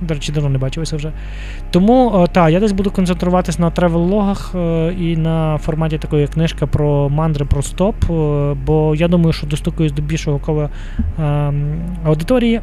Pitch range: 145-170 Hz